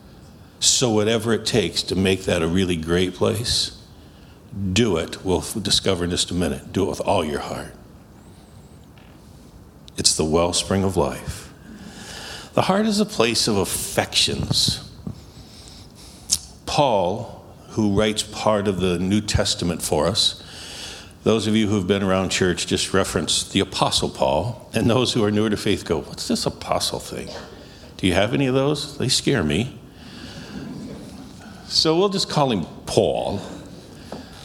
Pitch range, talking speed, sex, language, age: 90-115 Hz, 150 wpm, male, English, 60-79